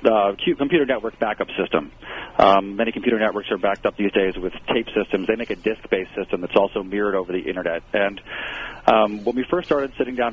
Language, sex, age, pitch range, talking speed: English, male, 40-59, 100-120 Hz, 215 wpm